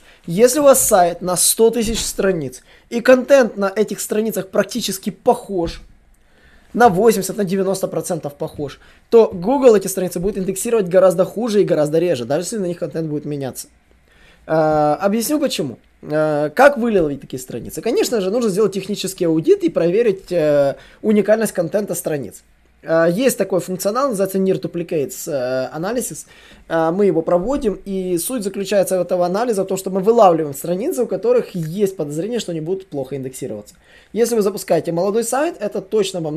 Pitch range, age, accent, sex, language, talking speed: 160-215 Hz, 20-39, native, male, Russian, 155 wpm